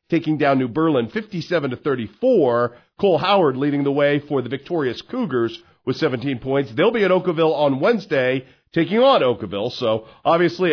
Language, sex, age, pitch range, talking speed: English, male, 40-59, 140-190 Hz, 170 wpm